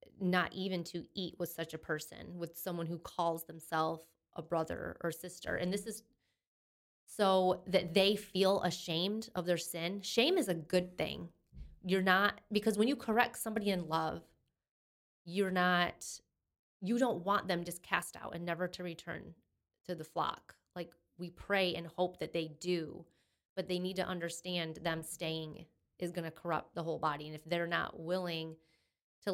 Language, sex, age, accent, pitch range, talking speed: English, female, 20-39, American, 170-190 Hz, 175 wpm